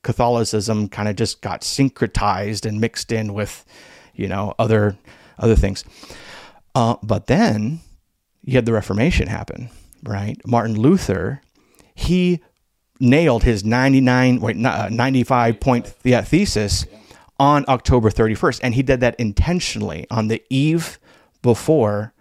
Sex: male